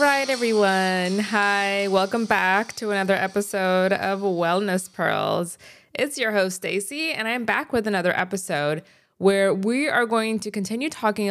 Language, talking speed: English, 150 wpm